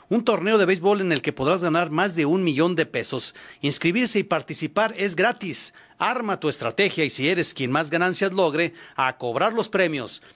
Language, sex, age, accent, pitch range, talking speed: Spanish, male, 40-59, Mexican, 160-210 Hz, 195 wpm